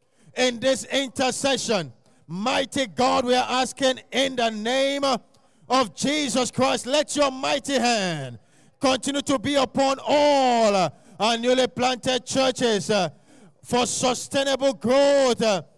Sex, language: male, English